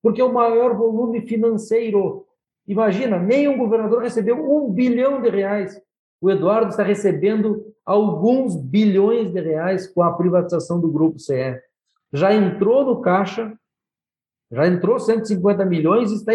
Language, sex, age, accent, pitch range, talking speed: Portuguese, male, 50-69, Brazilian, 185-225 Hz, 140 wpm